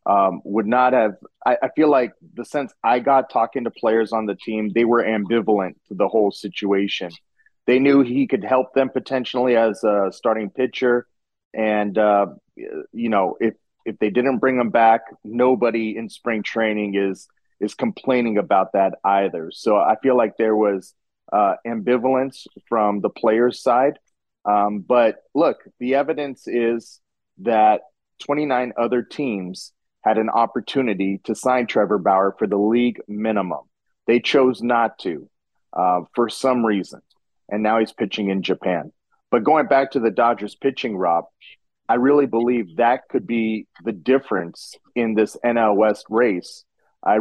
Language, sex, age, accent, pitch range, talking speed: English, male, 30-49, American, 105-125 Hz, 160 wpm